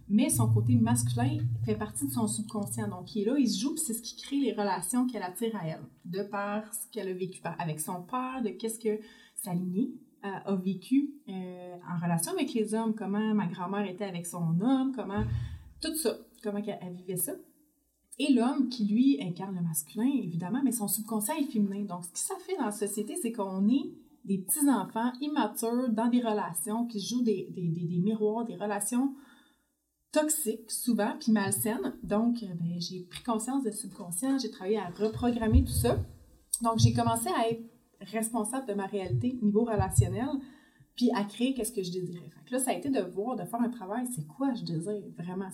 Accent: Canadian